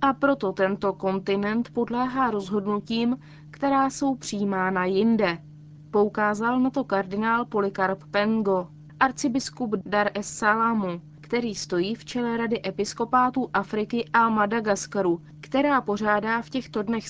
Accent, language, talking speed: native, Czech, 120 wpm